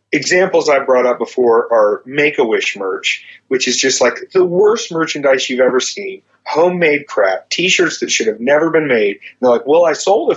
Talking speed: 190 wpm